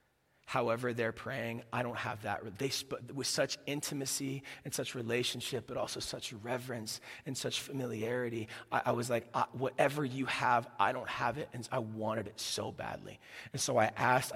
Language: English